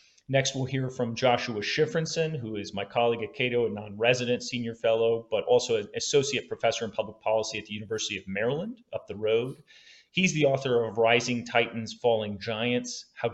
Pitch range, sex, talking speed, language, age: 110-135 Hz, male, 185 wpm, English, 30-49